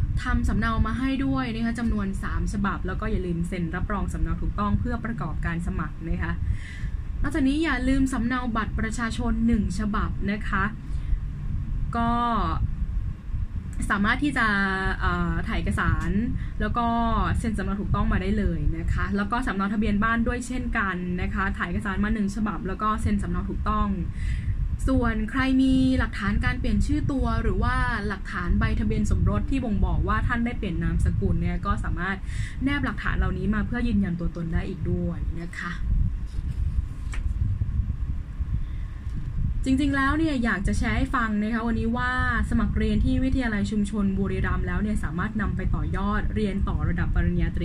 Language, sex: Thai, female